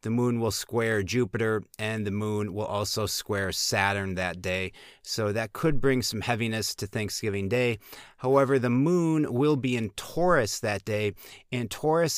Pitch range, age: 110-130 Hz, 30-49